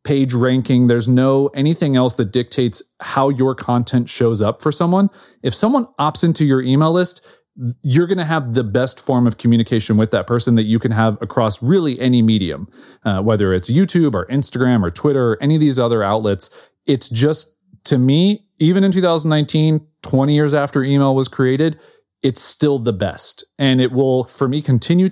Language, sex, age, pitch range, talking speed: English, male, 30-49, 115-150 Hz, 190 wpm